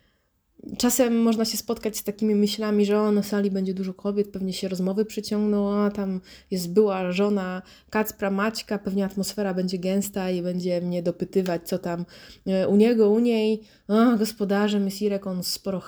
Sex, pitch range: female, 190-220 Hz